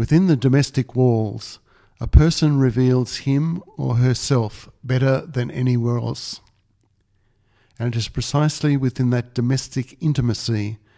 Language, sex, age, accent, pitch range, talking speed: English, male, 60-79, Australian, 110-135 Hz, 120 wpm